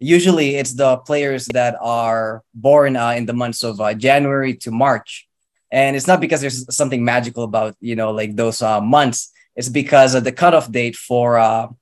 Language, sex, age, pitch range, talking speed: English, male, 20-39, 120-145 Hz, 195 wpm